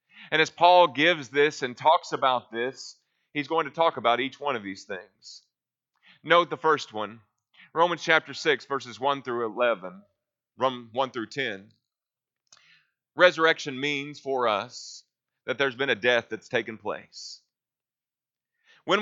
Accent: American